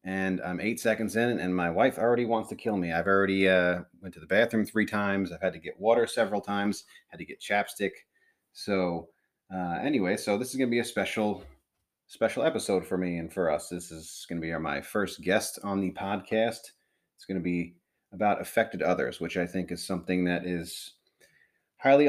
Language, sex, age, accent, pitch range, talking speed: English, male, 30-49, American, 90-105 Hz, 210 wpm